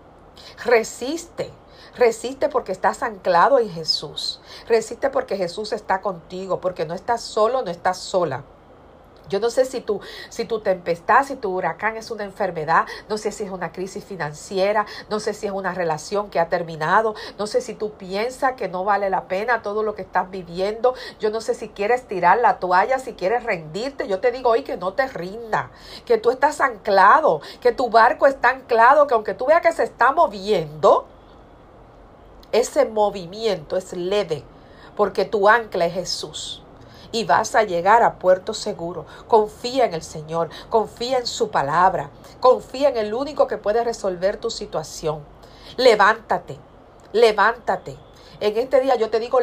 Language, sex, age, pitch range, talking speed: Spanish, female, 50-69, 190-255 Hz, 170 wpm